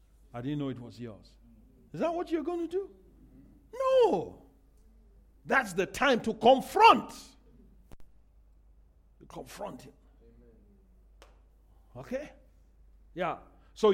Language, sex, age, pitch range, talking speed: English, male, 50-69, 200-295 Hz, 110 wpm